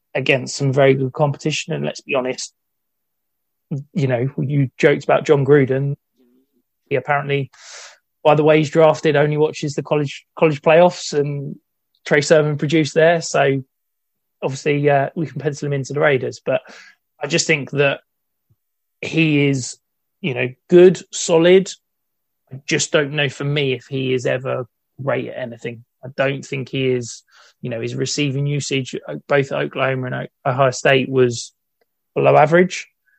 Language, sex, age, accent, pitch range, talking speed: English, male, 20-39, British, 130-150 Hz, 155 wpm